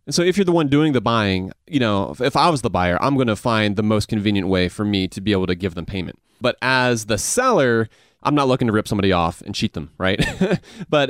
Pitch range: 100-135 Hz